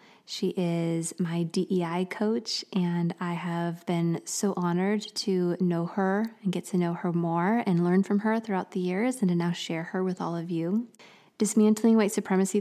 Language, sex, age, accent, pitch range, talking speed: English, female, 20-39, American, 175-215 Hz, 185 wpm